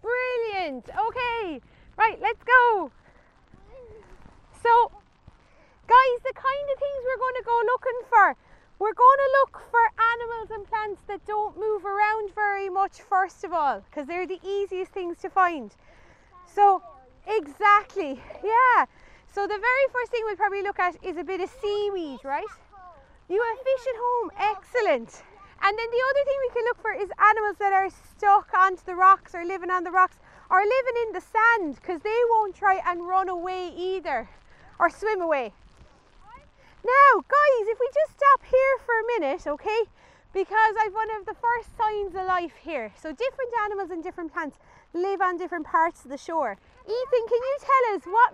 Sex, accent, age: female, Irish, 30-49